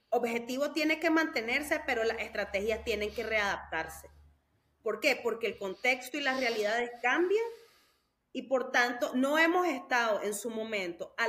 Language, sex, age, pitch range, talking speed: Spanish, female, 30-49, 220-315 Hz, 155 wpm